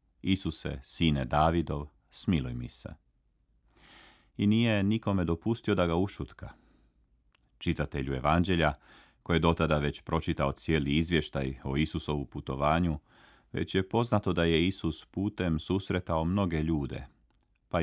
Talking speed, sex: 120 wpm, male